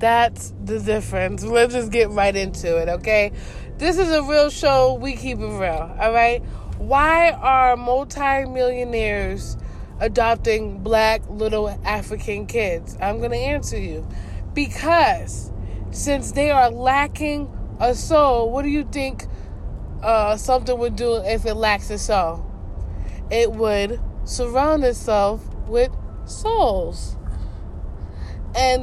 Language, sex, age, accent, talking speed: English, female, 20-39, American, 125 wpm